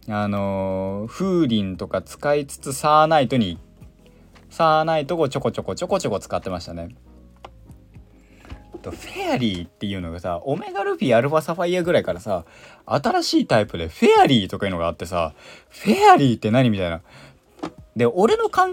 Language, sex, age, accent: Japanese, male, 20-39, native